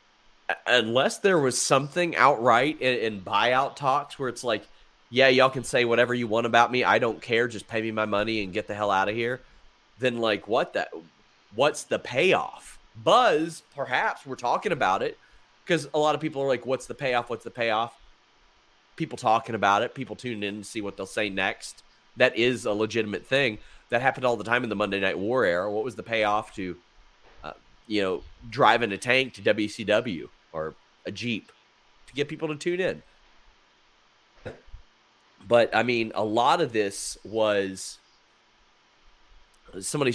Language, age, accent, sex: English, 30-49, American, male